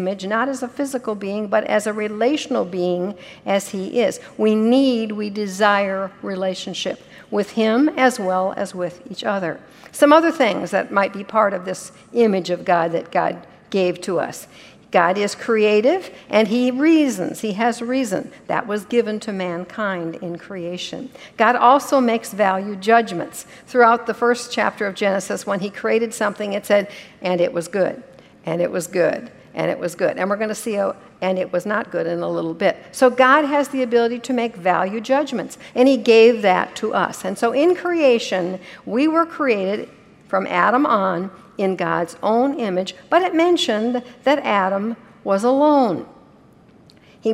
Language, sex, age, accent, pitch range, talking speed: English, female, 60-79, American, 190-245 Hz, 175 wpm